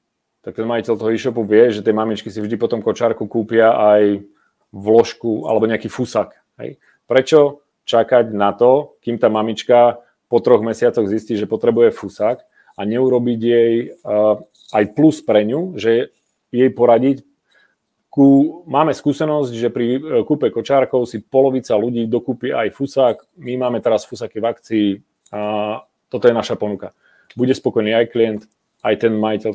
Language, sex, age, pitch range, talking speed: Czech, male, 40-59, 110-130 Hz, 145 wpm